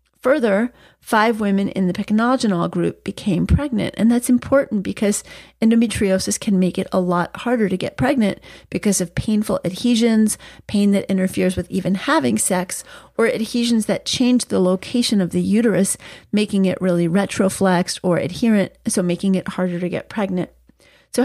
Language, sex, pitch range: English, female, 185-240 Hz